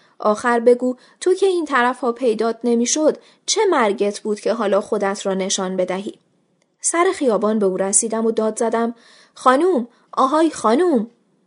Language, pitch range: Persian, 195-265 Hz